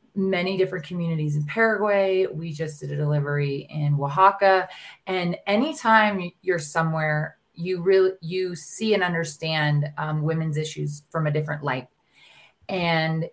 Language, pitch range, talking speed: English, 155-185 Hz, 135 wpm